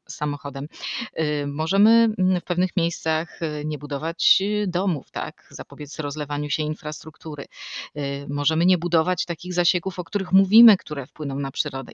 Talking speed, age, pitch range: 125 wpm, 30-49, 155-205 Hz